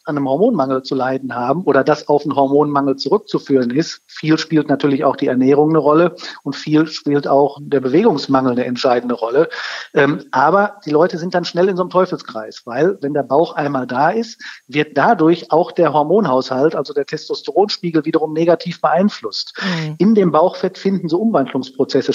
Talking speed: 175 wpm